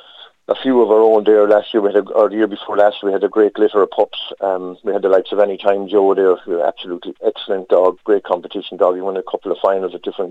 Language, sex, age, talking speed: English, male, 40-59, 280 wpm